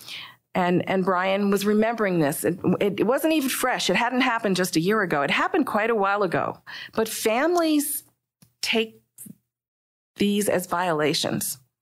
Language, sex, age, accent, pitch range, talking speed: English, female, 40-59, American, 165-200 Hz, 150 wpm